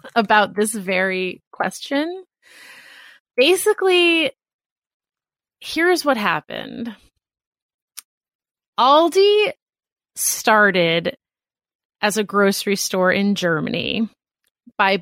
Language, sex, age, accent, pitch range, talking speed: English, female, 30-49, American, 195-255 Hz, 70 wpm